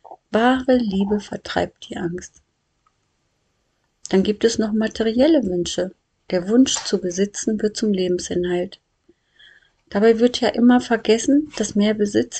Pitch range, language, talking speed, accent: 185-240 Hz, German, 125 wpm, German